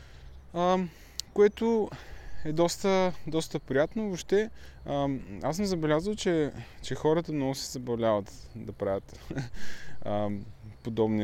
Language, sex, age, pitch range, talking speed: Bulgarian, male, 20-39, 100-130 Hz, 110 wpm